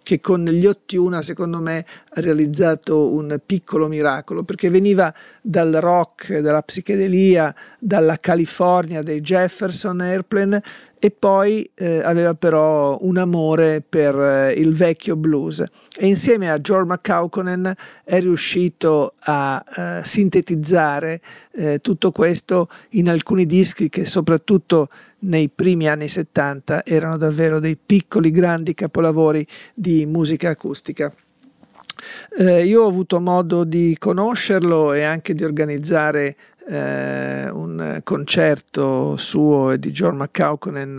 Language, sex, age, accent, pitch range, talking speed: Italian, male, 50-69, native, 150-185 Hz, 125 wpm